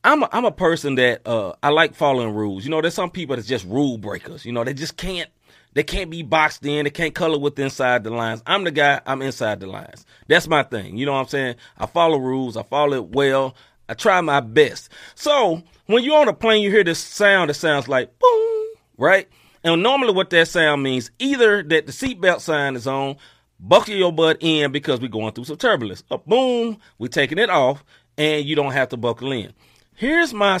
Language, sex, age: English, male, 30-49